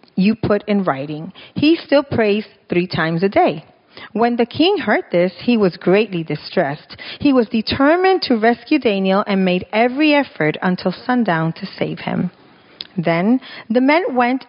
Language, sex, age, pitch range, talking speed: English, female, 40-59, 180-250 Hz, 160 wpm